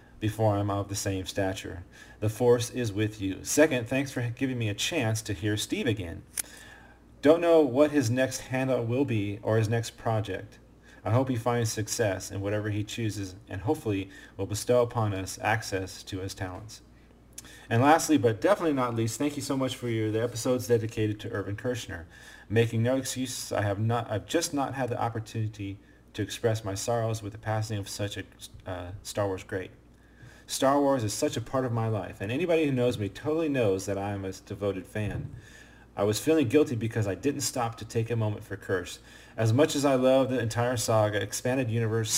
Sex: male